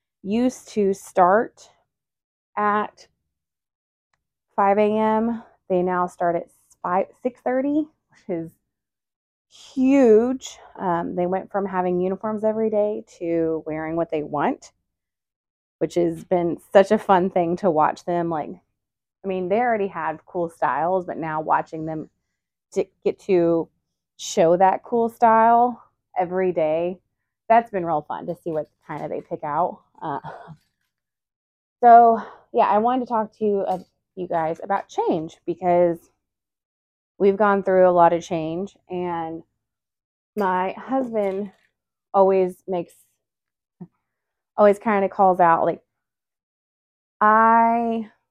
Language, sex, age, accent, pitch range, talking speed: English, female, 30-49, American, 165-210 Hz, 130 wpm